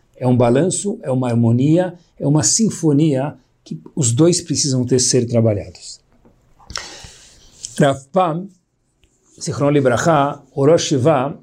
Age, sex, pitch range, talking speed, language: 50-69, male, 130-175 Hz, 105 wpm, Portuguese